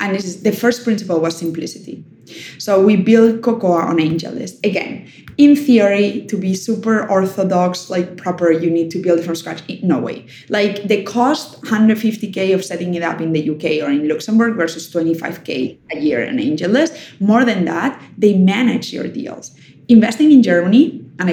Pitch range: 170-230 Hz